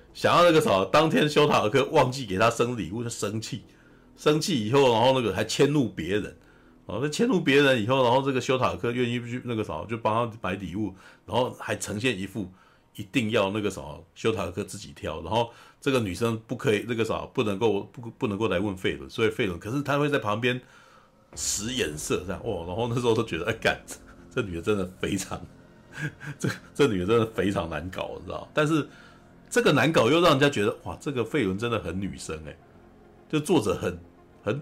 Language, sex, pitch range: Chinese, male, 90-125 Hz